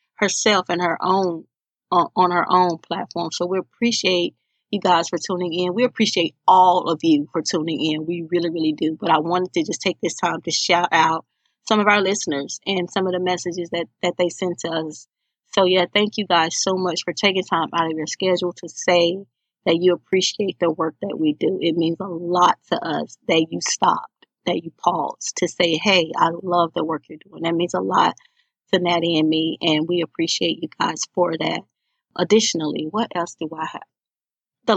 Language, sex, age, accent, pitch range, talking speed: English, female, 30-49, American, 165-185 Hz, 210 wpm